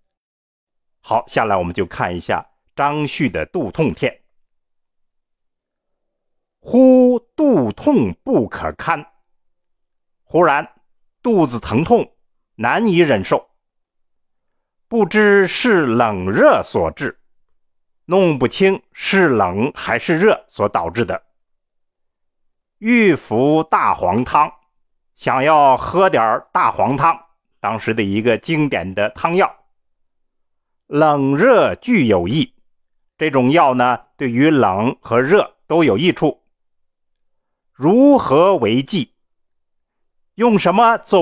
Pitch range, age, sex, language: 110-175 Hz, 50-69, male, Chinese